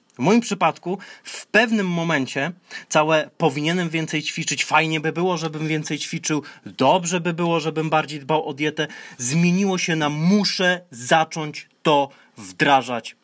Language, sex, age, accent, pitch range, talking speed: Polish, male, 30-49, native, 140-165 Hz, 140 wpm